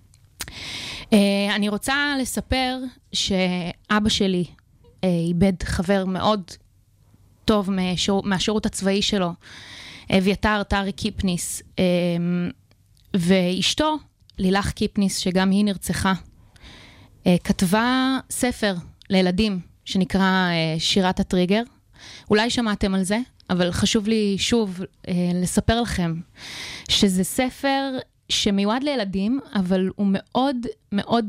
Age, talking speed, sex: 20-39, 90 wpm, female